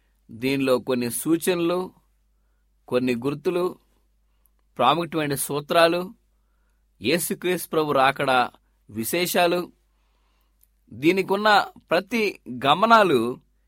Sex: male